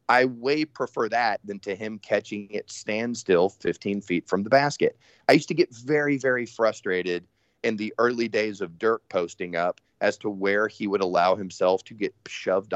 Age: 30-49